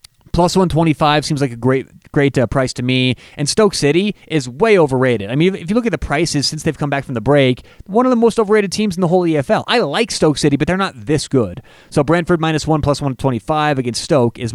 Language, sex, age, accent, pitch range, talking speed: English, male, 30-49, American, 130-170 Hz, 250 wpm